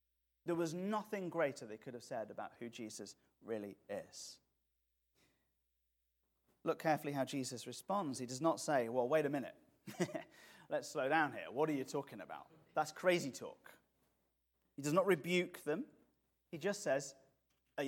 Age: 30-49